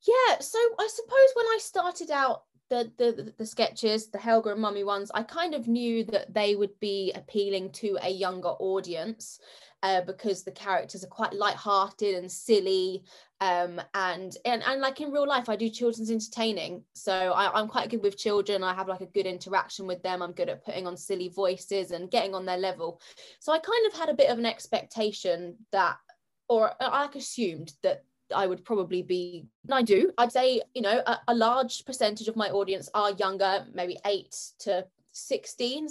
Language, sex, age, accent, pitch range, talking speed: English, female, 20-39, British, 190-255 Hz, 200 wpm